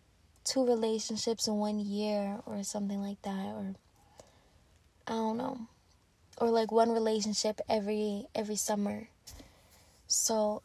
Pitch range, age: 200-230 Hz, 20-39